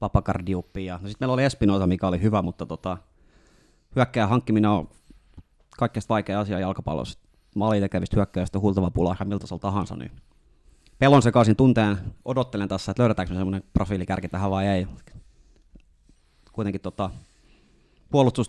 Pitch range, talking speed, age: 95-115 Hz, 135 wpm, 30-49